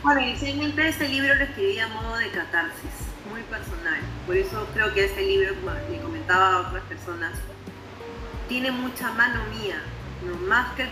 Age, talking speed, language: 30-49, 175 wpm, Spanish